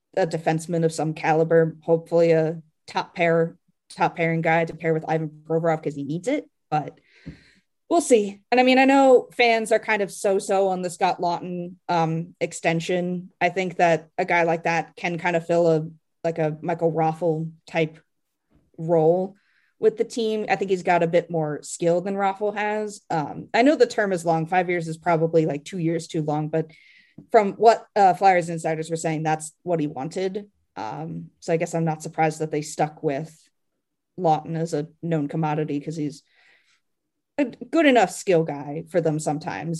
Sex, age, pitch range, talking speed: female, 20-39, 160-195 Hz, 190 wpm